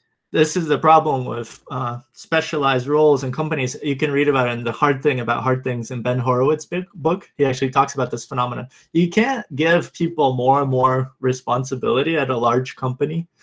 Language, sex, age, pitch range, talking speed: English, male, 20-39, 130-160 Hz, 190 wpm